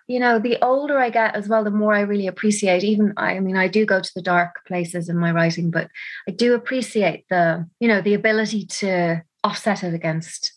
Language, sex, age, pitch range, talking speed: English, female, 30-49, 175-205 Hz, 220 wpm